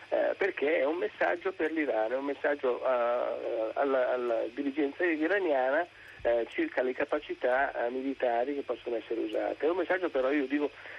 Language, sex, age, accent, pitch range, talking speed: Italian, male, 50-69, native, 125-145 Hz, 145 wpm